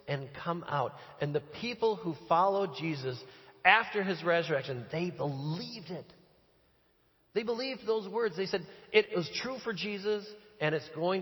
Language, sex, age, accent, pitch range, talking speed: English, male, 40-59, American, 145-205 Hz, 155 wpm